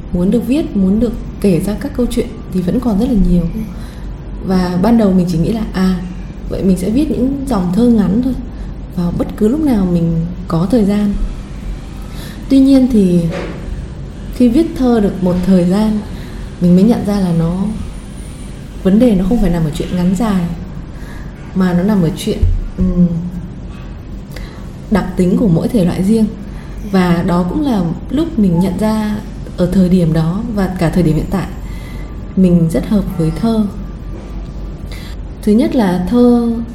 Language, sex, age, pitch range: Vietnamese, female, 20-39, 175-220 Hz